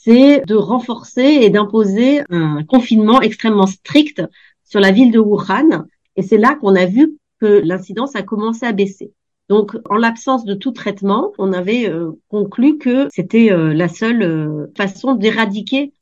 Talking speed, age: 155 wpm, 40-59